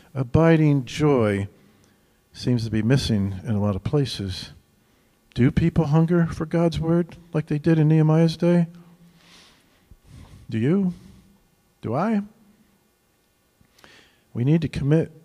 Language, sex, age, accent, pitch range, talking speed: English, male, 50-69, American, 125-175 Hz, 120 wpm